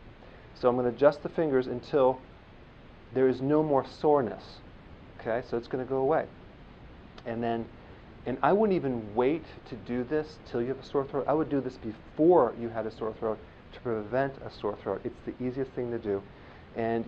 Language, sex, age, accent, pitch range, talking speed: English, male, 40-59, American, 110-135 Hz, 195 wpm